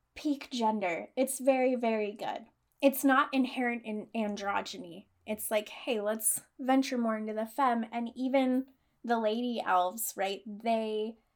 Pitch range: 215-270 Hz